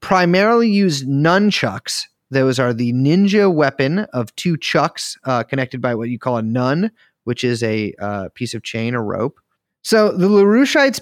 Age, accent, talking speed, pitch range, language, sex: 30-49, American, 170 wpm, 125-170 Hz, English, male